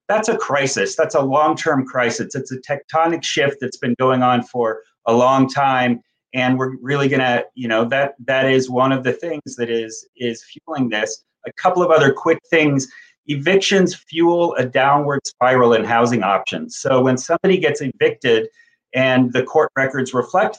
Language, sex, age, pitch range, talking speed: English, male, 30-49, 125-150 Hz, 180 wpm